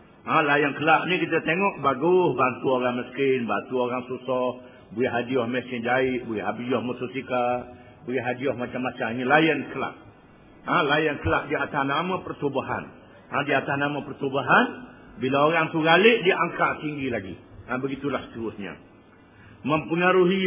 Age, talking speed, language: 50-69, 150 wpm, Malay